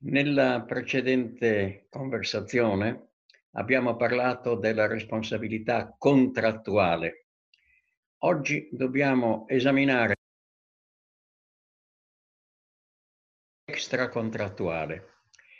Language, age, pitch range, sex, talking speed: Italian, 60-79, 115-150 Hz, male, 50 wpm